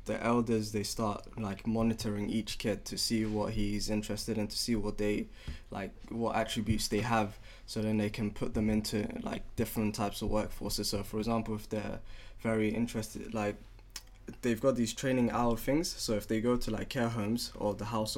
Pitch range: 105-115 Hz